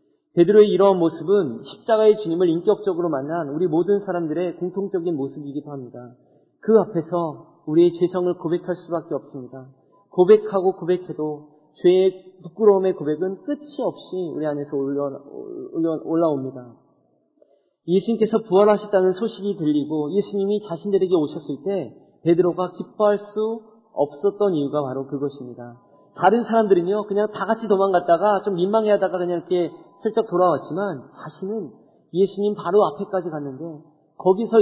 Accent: native